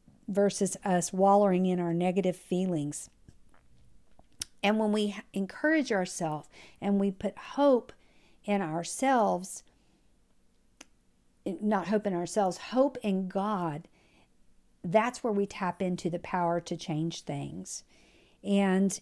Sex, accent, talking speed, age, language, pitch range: female, American, 115 wpm, 50-69, English, 180-220 Hz